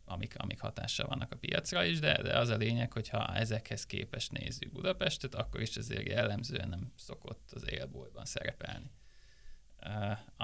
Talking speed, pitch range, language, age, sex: 155 wpm, 105-135 Hz, Hungarian, 20-39, male